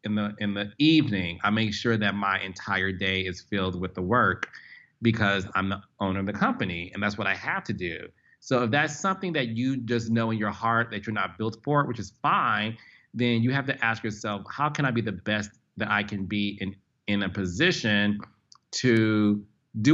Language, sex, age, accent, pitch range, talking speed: English, male, 30-49, American, 95-115 Hz, 220 wpm